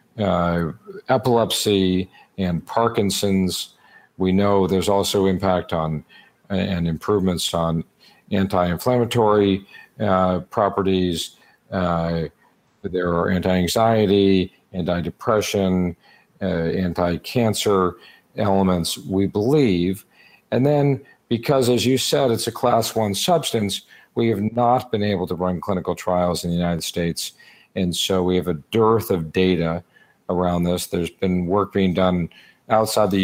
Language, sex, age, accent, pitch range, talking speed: English, male, 50-69, American, 85-100 Hz, 115 wpm